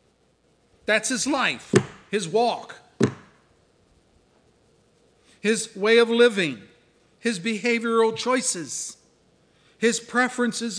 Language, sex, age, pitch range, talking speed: English, male, 50-69, 160-245 Hz, 80 wpm